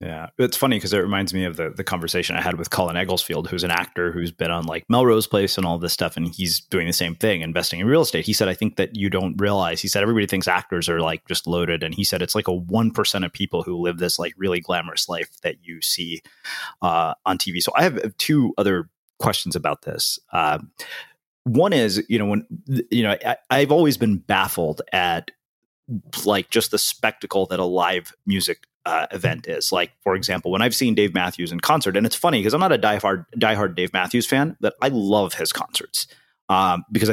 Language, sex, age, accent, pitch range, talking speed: English, male, 30-49, American, 90-110 Hz, 225 wpm